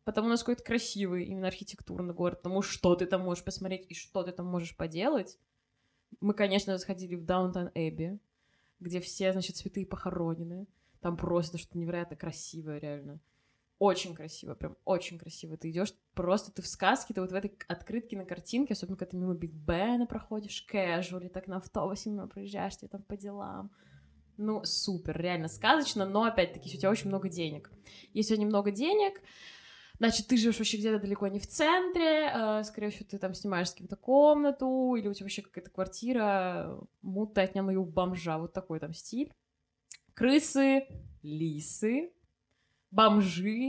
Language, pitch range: Russian, 180-225 Hz